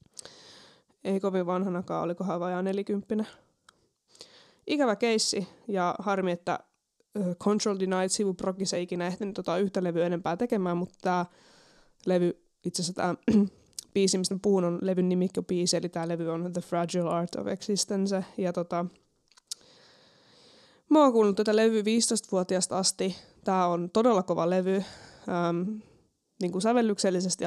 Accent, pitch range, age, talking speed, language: native, 175-205 Hz, 20-39, 135 wpm, Finnish